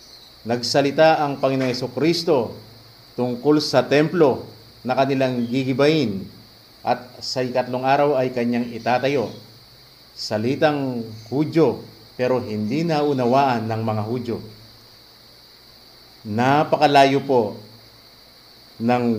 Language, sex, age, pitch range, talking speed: English, male, 50-69, 115-145 Hz, 90 wpm